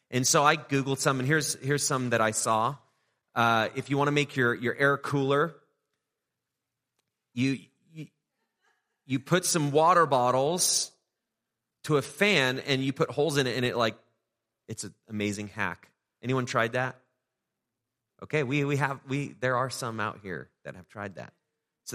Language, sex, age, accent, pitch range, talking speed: English, male, 30-49, American, 130-160 Hz, 170 wpm